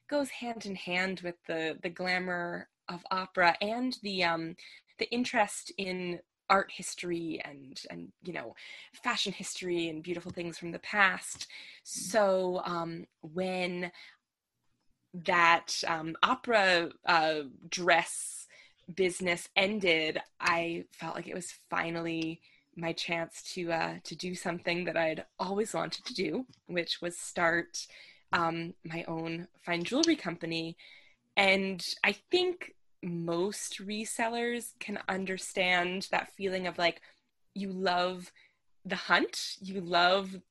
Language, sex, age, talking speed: English, female, 20-39, 125 wpm